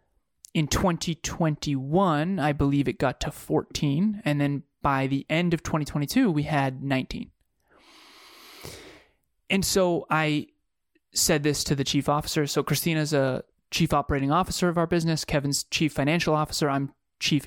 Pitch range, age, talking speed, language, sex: 140-170 Hz, 20-39, 145 wpm, English, male